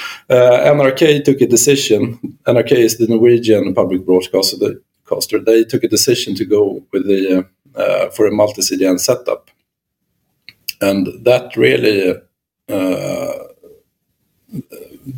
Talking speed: 110 wpm